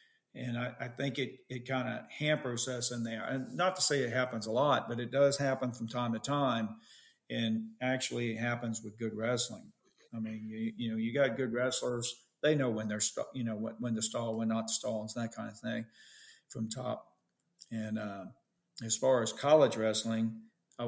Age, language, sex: 50-69, English, male